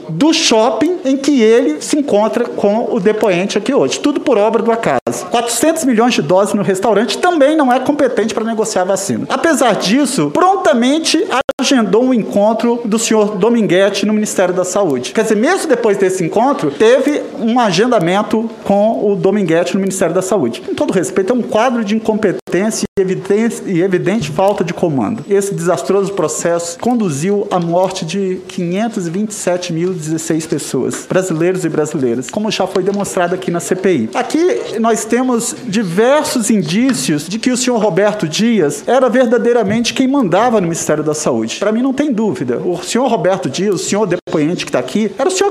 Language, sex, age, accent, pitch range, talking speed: Portuguese, male, 50-69, Brazilian, 190-255 Hz, 175 wpm